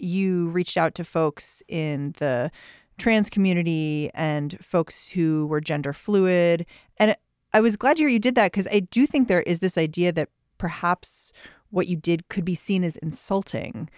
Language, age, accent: English, 30-49, American